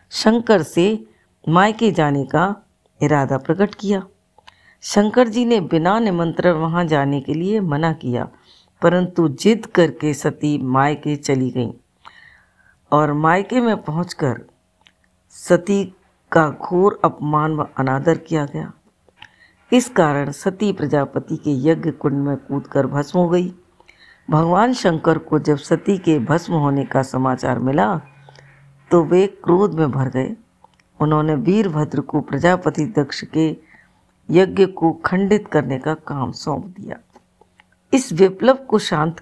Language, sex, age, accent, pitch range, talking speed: Hindi, female, 60-79, native, 145-185 Hz, 135 wpm